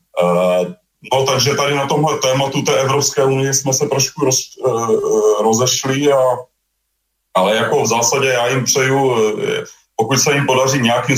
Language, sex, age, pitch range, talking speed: Slovak, male, 30-49, 100-130 Hz, 145 wpm